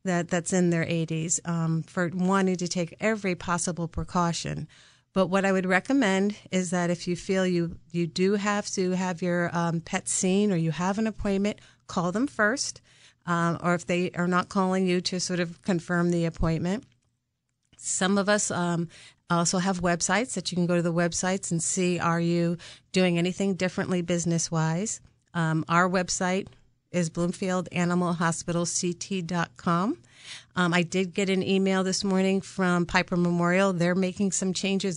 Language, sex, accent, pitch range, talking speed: English, female, American, 170-195 Hz, 170 wpm